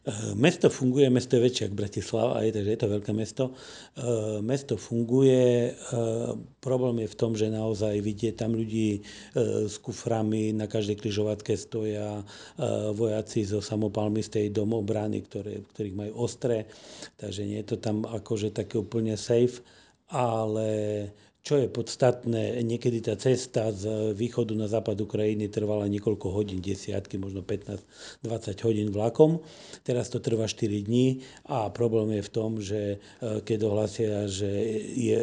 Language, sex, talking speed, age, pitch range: Slovak, male, 140 wpm, 40-59, 105-115 Hz